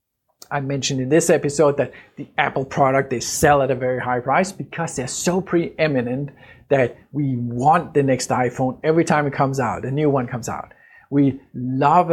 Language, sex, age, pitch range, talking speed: English, male, 50-69, 125-160 Hz, 190 wpm